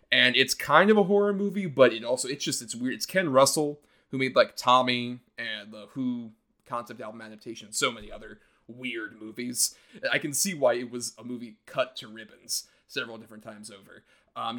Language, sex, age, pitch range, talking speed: English, male, 30-49, 120-155 Hz, 200 wpm